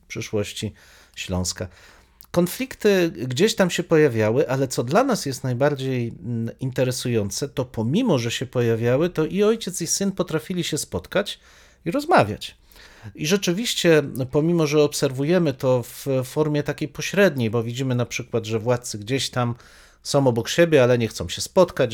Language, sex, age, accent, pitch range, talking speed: Polish, male, 40-59, native, 120-160 Hz, 150 wpm